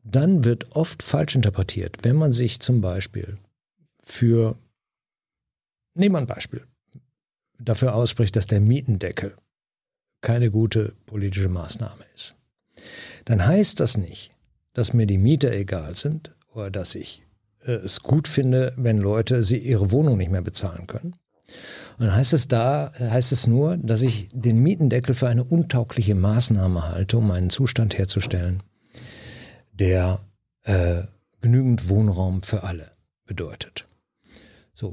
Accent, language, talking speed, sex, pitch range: German, German, 135 wpm, male, 105-135 Hz